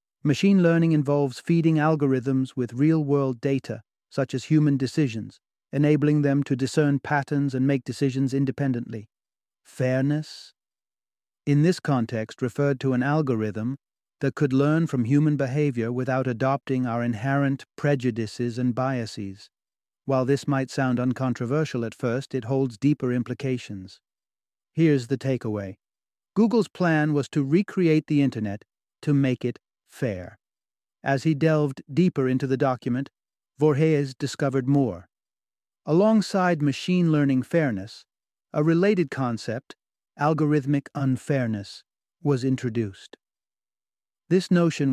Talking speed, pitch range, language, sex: 120 wpm, 125-150 Hz, English, male